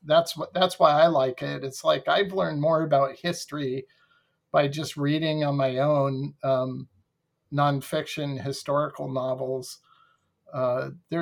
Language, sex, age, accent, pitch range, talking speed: English, male, 50-69, American, 135-165 Hz, 135 wpm